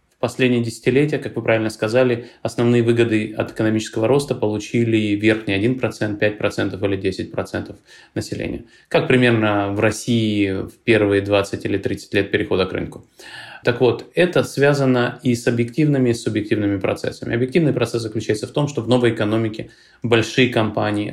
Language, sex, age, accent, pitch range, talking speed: Russian, male, 20-39, native, 110-125 Hz, 150 wpm